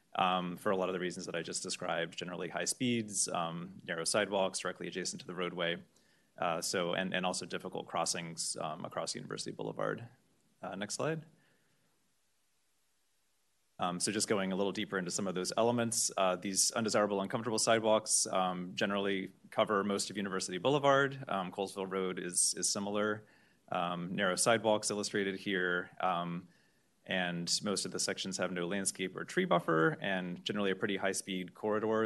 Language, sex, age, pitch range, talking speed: English, male, 30-49, 90-105 Hz, 170 wpm